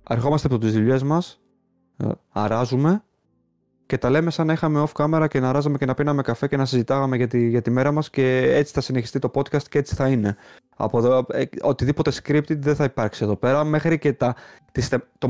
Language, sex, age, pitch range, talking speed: Greek, male, 20-39, 110-140 Hz, 190 wpm